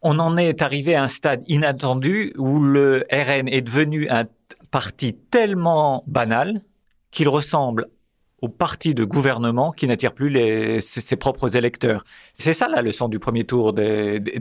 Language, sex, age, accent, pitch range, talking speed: French, male, 50-69, French, 120-155 Hz, 160 wpm